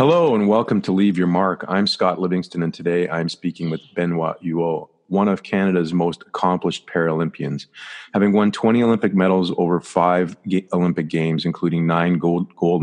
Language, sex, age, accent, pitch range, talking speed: English, male, 40-59, American, 80-95 Hz, 170 wpm